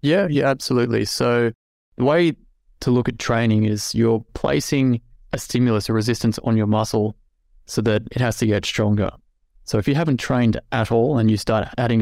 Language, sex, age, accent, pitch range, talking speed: English, male, 20-39, Australian, 105-120 Hz, 190 wpm